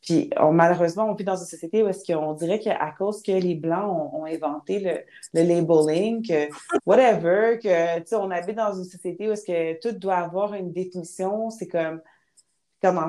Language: English